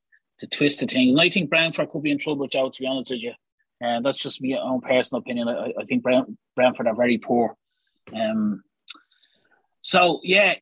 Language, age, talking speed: English, 30-49, 200 wpm